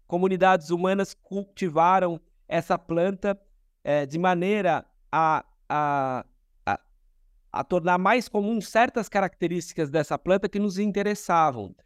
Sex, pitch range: male, 155-205 Hz